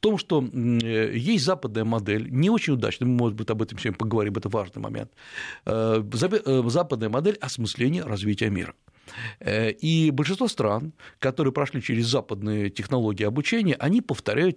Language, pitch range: Russian, 115-160 Hz